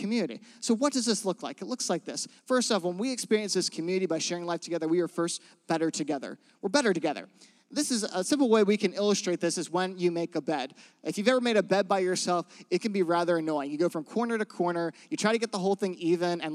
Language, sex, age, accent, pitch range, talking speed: English, male, 30-49, American, 165-220 Hz, 265 wpm